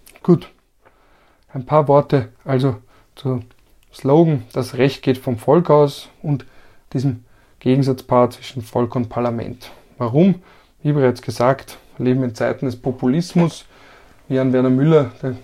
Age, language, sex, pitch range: 20-39, German, male, 120-135 Hz